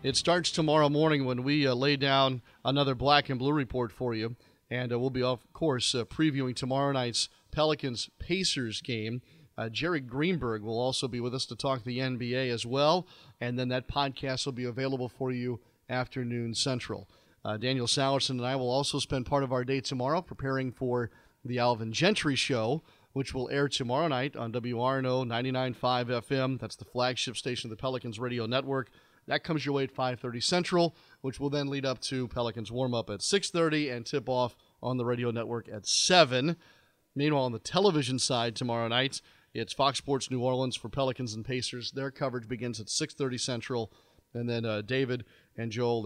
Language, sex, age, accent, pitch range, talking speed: English, male, 40-59, American, 120-135 Hz, 190 wpm